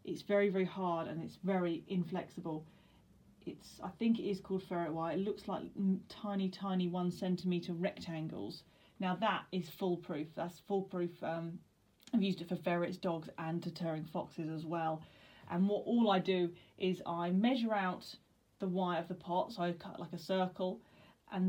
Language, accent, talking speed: English, British, 175 wpm